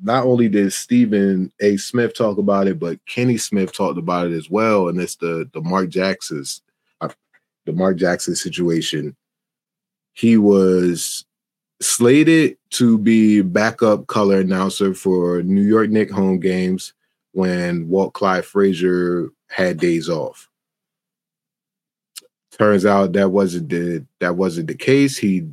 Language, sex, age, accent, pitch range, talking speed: English, male, 30-49, American, 90-110 Hz, 135 wpm